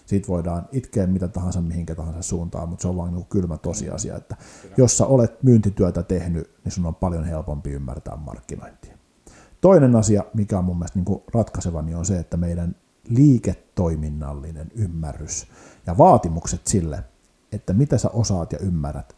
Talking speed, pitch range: 155 wpm, 90-115 Hz